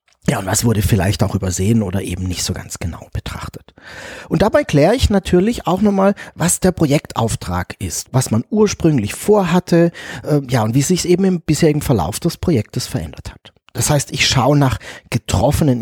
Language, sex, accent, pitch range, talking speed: German, male, German, 115-185 Hz, 180 wpm